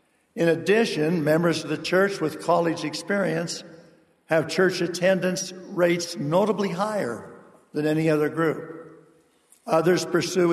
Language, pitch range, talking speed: English, 150-180 Hz, 120 wpm